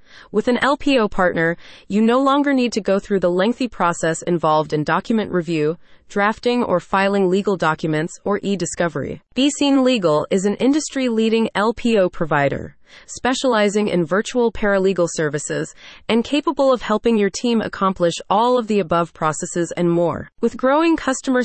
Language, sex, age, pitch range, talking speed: English, female, 30-49, 170-235 Hz, 155 wpm